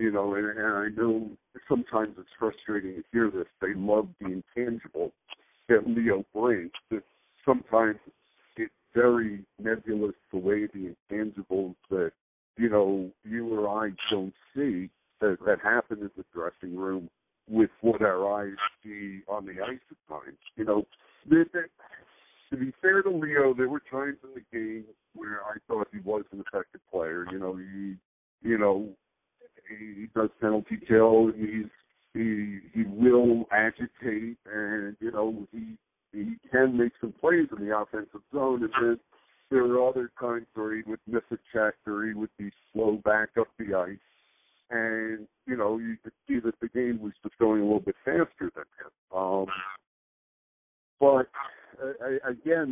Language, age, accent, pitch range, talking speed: English, 60-79, American, 105-120 Hz, 160 wpm